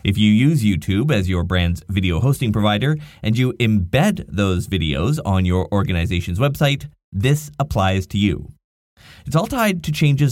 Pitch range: 90-130 Hz